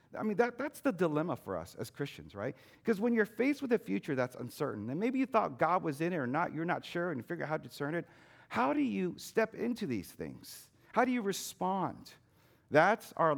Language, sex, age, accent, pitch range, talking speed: English, male, 50-69, American, 125-185 Hz, 240 wpm